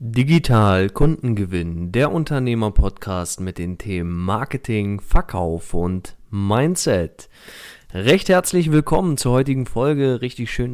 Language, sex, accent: German, male, German